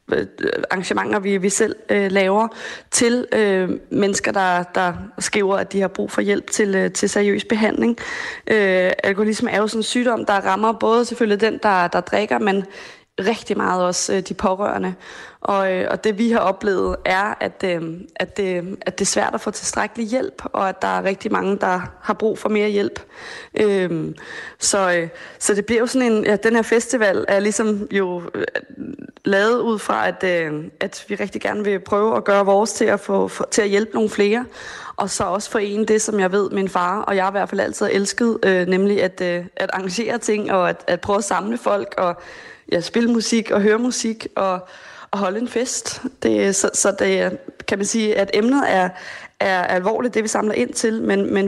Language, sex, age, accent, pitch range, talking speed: Danish, female, 20-39, native, 190-225 Hz, 200 wpm